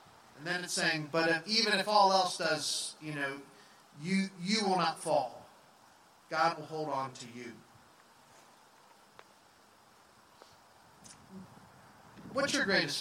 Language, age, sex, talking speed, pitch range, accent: English, 30-49, male, 125 wpm, 145-185 Hz, American